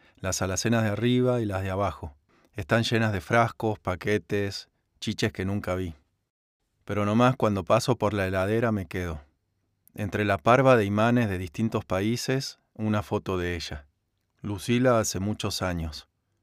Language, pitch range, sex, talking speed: Spanish, 90-110 Hz, male, 155 wpm